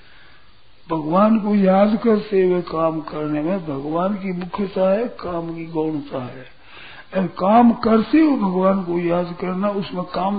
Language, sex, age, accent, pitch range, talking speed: Hindi, male, 60-79, native, 155-200 Hz, 145 wpm